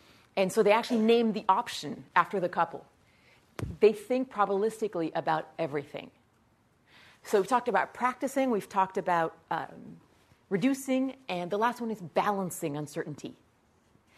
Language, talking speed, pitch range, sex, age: English, 135 wpm, 180-230 Hz, female, 40-59